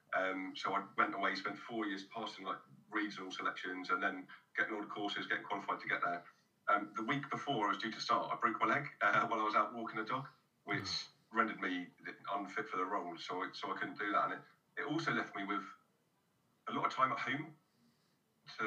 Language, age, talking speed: English, 40-59, 230 wpm